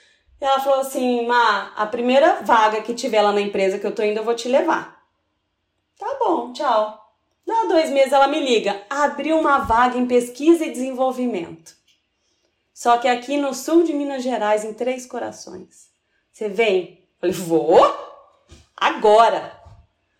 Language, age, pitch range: Portuguese, 30-49, 220-285 Hz